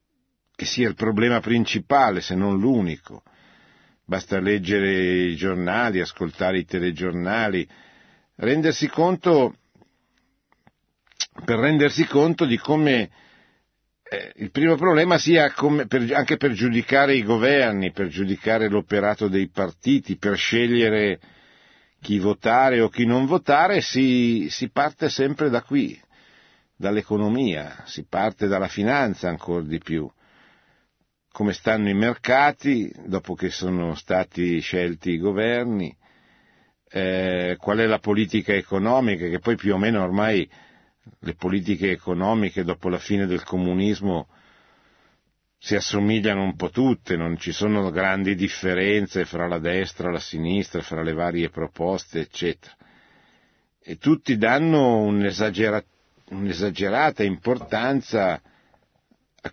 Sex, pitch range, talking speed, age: male, 90-120 Hz, 120 wpm, 50-69